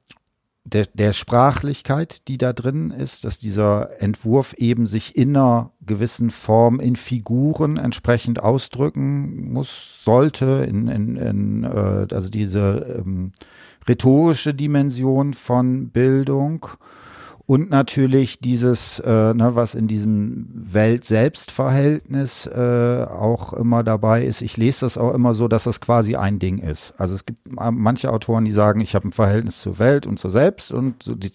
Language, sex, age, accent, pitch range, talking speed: German, male, 50-69, German, 110-135 Hz, 145 wpm